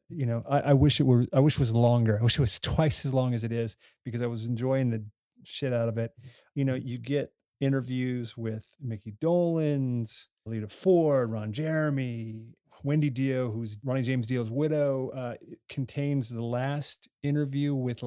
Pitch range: 115-140 Hz